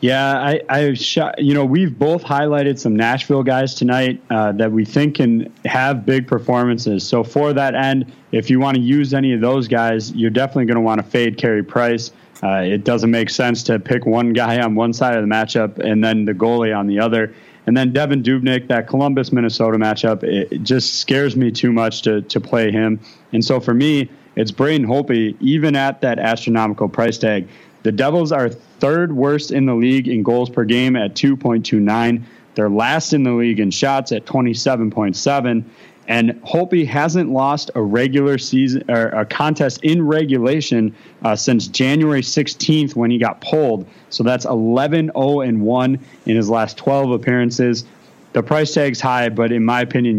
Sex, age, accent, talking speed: male, 20-39, American, 190 wpm